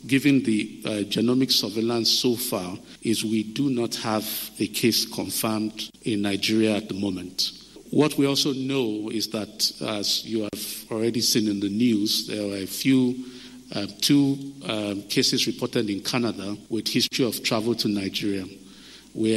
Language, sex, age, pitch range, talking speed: English, male, 50-69, 105-125 Hz, 160 wpm